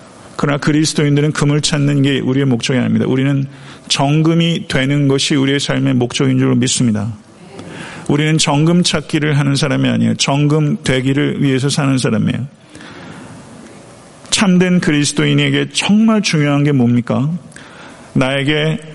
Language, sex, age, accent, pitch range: Korean, male, 40-59, native, 135-165 Hz